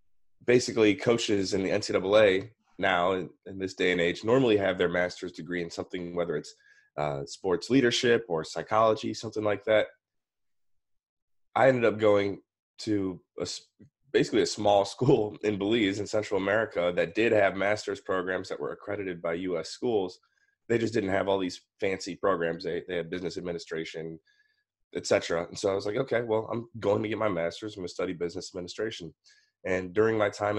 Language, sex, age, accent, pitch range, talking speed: English, male, 20-39, American, 90-110 Hz, 180 wpm